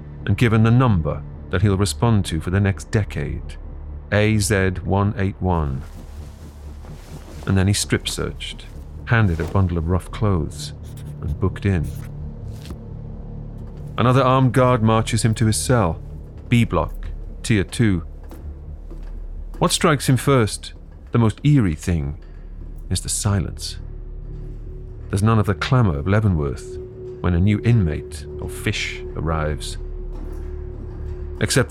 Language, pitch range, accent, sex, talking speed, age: English, 75-110 Hz, British, male, 120 wpm, 40-59